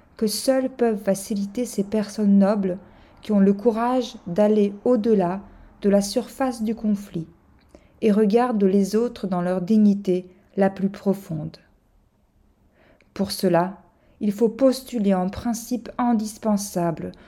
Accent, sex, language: French, female, French